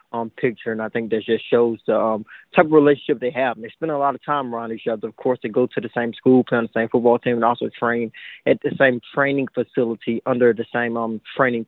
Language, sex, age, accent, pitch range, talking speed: English, male, 20-39, American, 120-135 Hz, 265 wpm